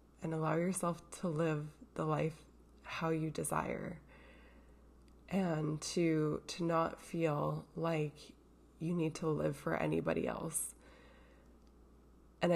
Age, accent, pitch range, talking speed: 20-39, American, 140-165 Hz, 115 wpm